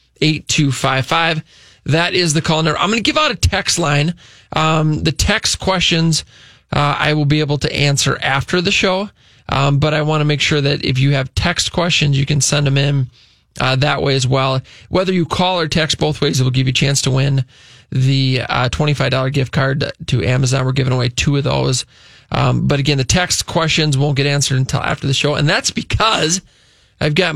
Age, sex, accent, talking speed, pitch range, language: 20-39, male, American, 215 wpm, 135-160 Hz, English